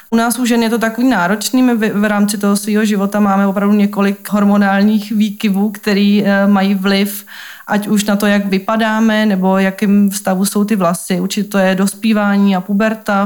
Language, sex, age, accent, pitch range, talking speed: Czech, female, 30-49, native, 190-210 Hz, 180 wpm